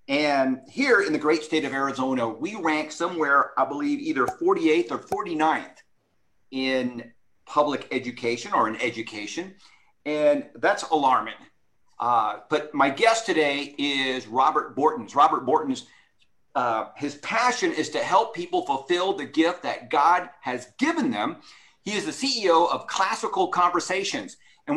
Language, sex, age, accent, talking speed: English, male, 50-69, American, 145 wpm